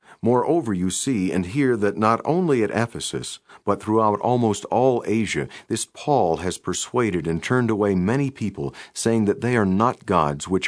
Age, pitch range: 50-69, 85-115 Hz